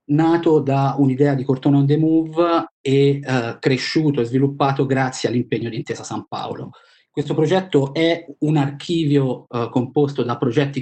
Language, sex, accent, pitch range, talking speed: Italian, male, native, 125-145 Hz, 155 wpm